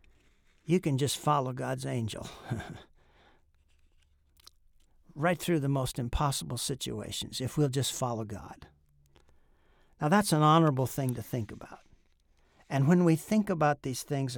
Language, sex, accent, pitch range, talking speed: English, male, American, 110-140 Hz, 135 wpm